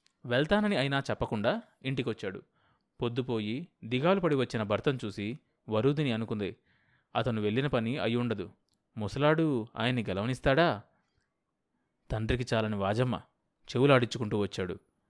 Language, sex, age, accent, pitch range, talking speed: Telugu, male, 20-39, native, 115-155 Hz, 100 wpm